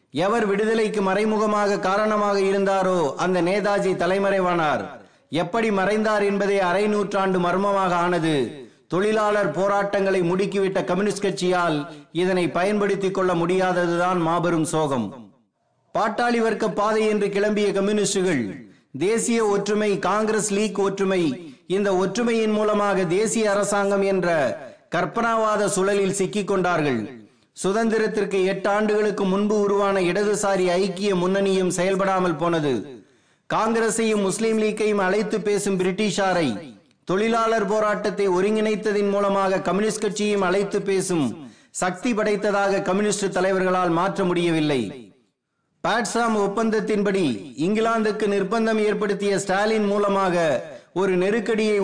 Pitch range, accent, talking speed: 185-210 Hz, native, 70 wpm